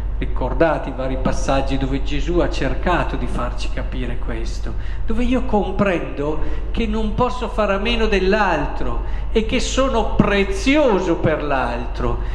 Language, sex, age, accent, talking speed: Italian, male, 50-69, native, 135 wpm